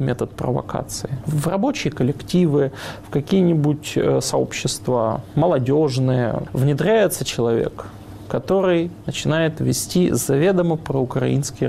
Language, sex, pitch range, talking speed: Russian, male, 135-175 Hz, 80 wpm